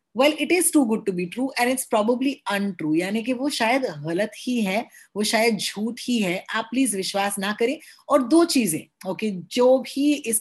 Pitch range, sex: 195-260 Hz, female